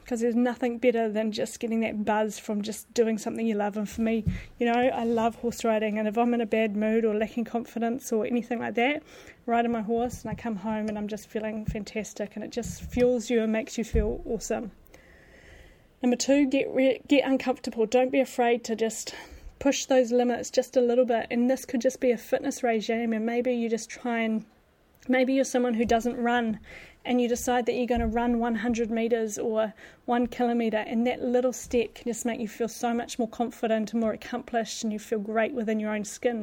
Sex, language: female, English